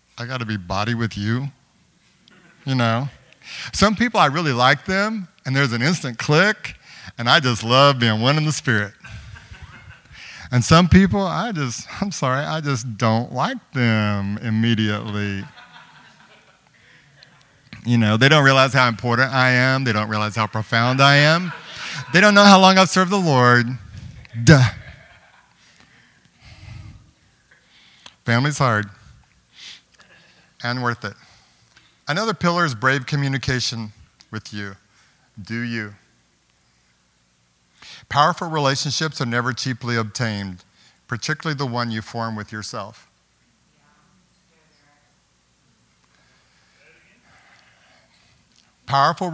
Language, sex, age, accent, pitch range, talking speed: English, male, 50-69, American, 105-145 Hz, 120 wpm